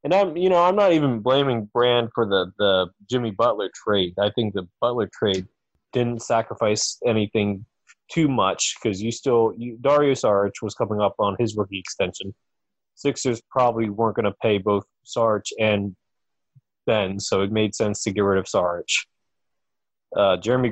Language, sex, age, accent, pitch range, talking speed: English, male, 20-39, American, 100-130 Hz, 170 wpm